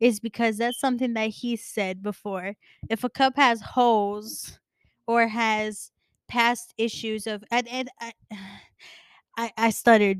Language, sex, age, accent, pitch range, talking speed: English, female, 10-29, American, 215-240 Hz, 140 wpm